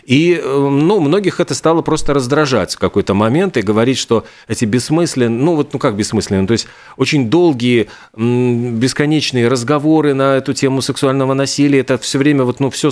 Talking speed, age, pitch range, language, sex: 170 wpm, 40-59, 110-140 Hz, Russian, male